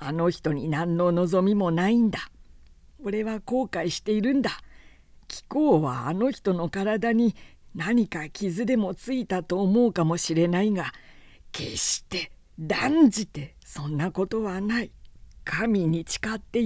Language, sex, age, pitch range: Japanese, female, 50-69, 155-220 Hz